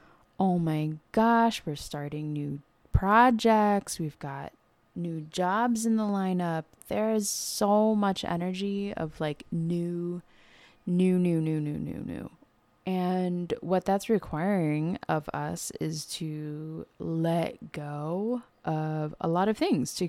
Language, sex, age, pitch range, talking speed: English, female, 20-39, 155-195 Hz, 130 wpm